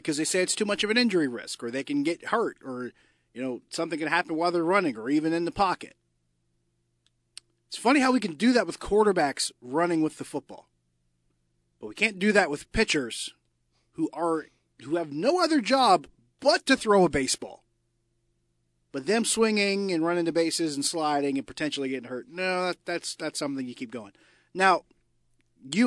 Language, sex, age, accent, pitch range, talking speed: English, male, 40-59, American, 125-175 Hz, 195 wpm